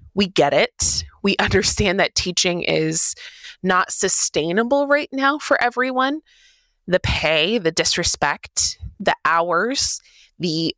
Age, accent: 20-39, American